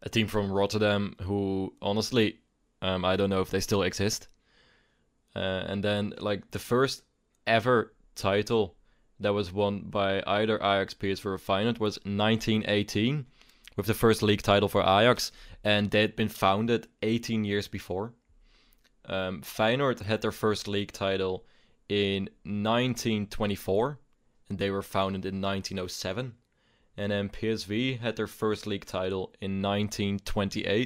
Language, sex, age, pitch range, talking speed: English, male, 20-39, 95-110 Hz, 140 wpm